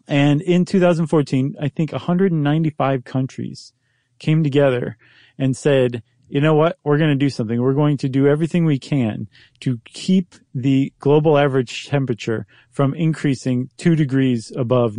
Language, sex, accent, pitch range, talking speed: English, male, American, 125-165 Hz, 150 wpm